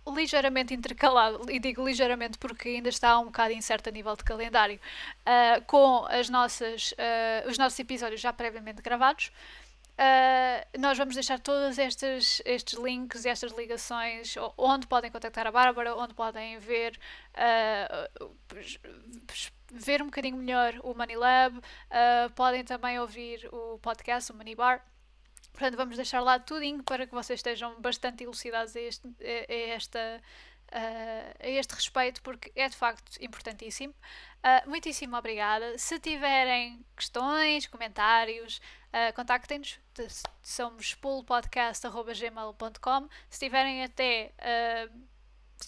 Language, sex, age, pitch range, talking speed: Portuguese, female, 10-29, 230-260 Hz, 135 wpm